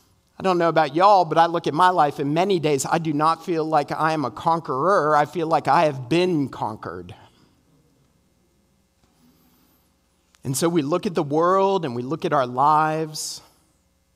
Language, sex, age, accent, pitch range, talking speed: English, male, 40-59, American, 155-220 Hz, 180 wpm